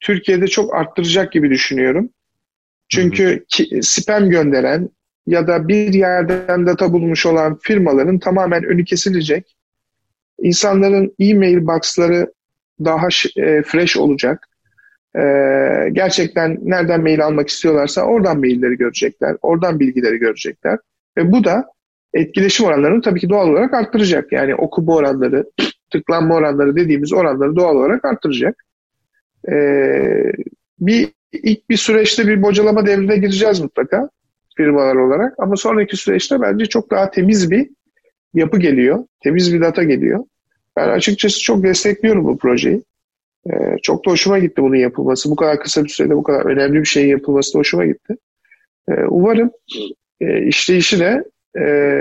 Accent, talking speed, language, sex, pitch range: native, 130 wpm, Turkish, male, 150-205 Hz